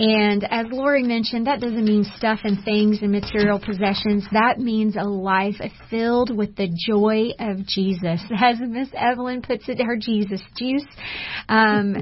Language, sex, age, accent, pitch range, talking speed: English, female, 30-49, American, 205-245 Hz, 160 wpm